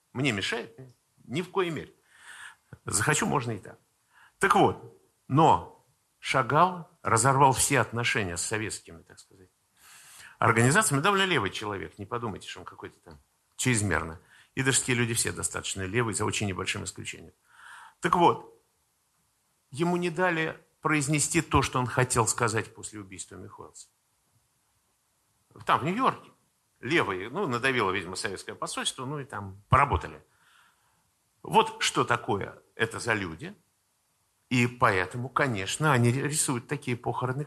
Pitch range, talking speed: 105-145 Hz, 130 wpm